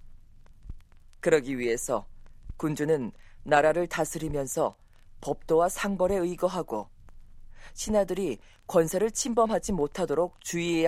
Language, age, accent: Korean, 40-59, native